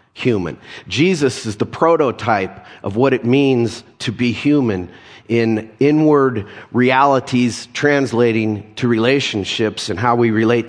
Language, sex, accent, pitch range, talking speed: English, male, American, 110-130 Hz, 125 wpm